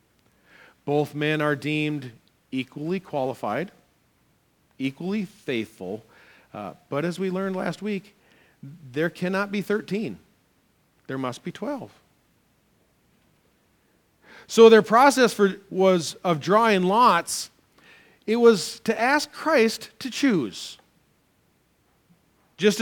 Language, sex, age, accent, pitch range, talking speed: English, male, 40-59, American, 130-200 Hz, 100 wpm